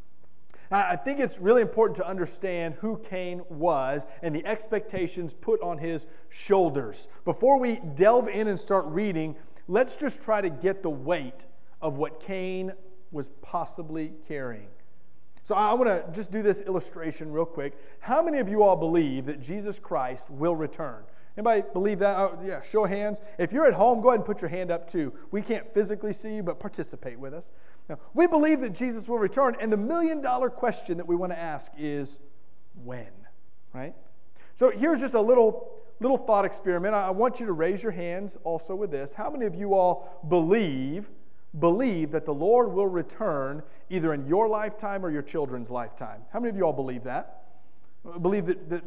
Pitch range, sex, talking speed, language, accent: 160-215 Hz, male, 185 wpm, English, American